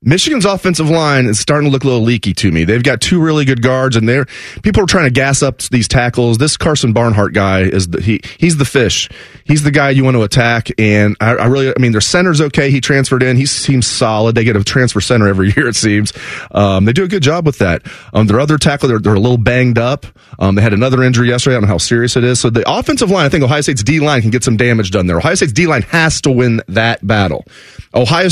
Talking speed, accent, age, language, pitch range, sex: 265 wpm, American, 30-49, English, 110-140 Hz, male